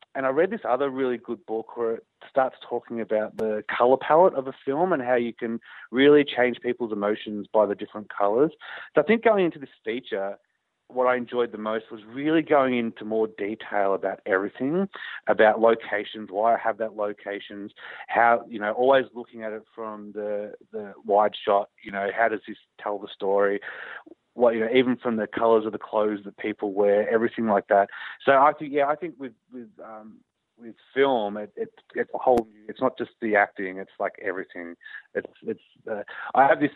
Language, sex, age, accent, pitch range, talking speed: English, male, 30-49, Australian, 105-120 Hz, 200 wpm